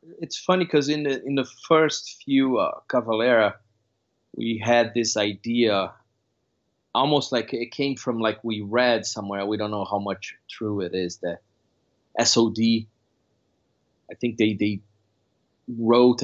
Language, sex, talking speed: English, male, 145 wpm